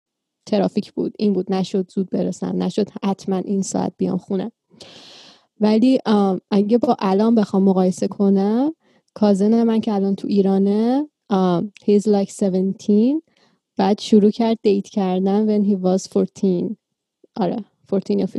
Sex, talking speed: female, 140 wpm